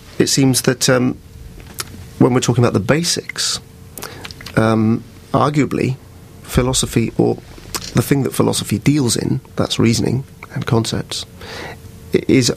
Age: 40-59